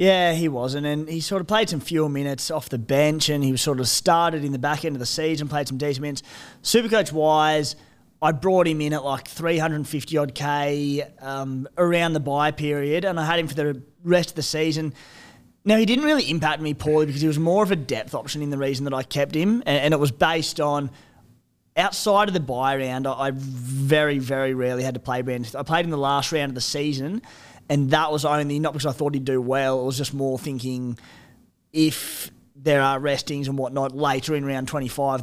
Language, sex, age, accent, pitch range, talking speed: English, male, 20-39, Australian, 130-155 Hz, 225 wpm